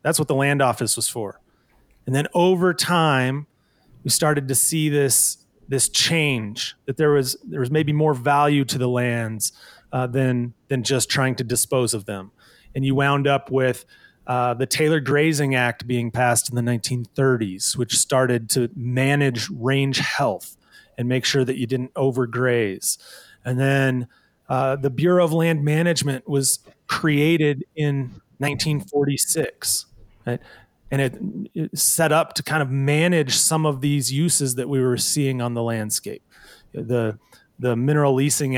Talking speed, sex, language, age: 160 wpm, male, English, 30-49